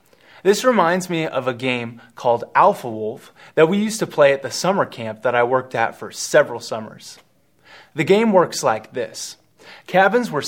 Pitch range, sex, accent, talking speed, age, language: 125-185 Hz, male, American, 185 wpm, 30-49, English